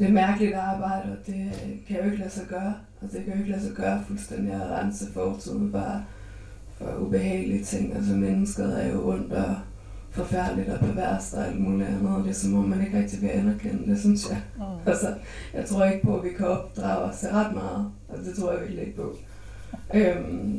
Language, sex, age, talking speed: Danish, female, 20-39, 220 wpm